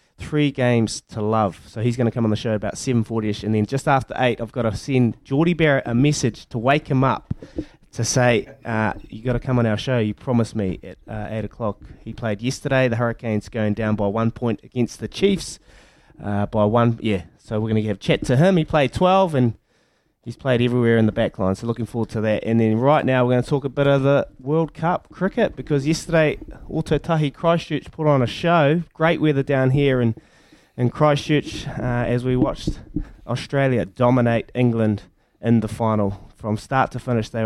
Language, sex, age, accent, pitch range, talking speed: English, male, 20-39, Australian, 110-145 Hz, 215 wpm